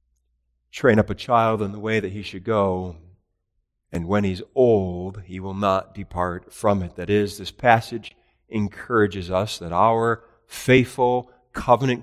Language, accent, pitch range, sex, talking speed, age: English, American, 90-115 Hz, male, 155 wpm, 40-59